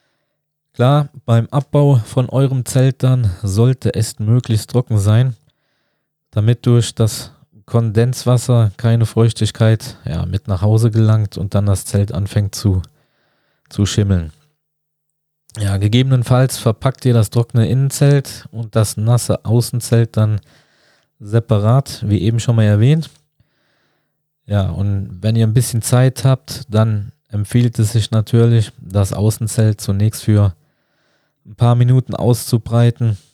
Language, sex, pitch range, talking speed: German, male, 105-130 Hz, 120 wpm